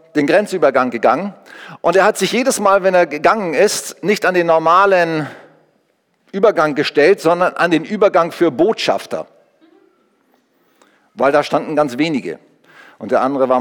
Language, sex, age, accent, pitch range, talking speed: German, male, 50-69, German, 155-210 Hz, 150 wpm